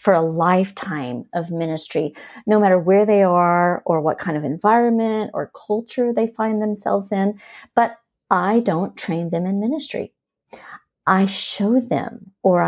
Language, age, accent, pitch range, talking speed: English, 50-69, American, 175-230 Hz, 150 wpm